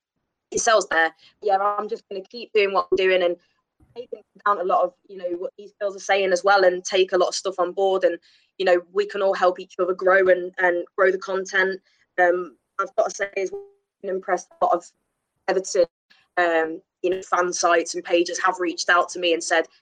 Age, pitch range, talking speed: 20-39, 175-195 Hz, 235 wpm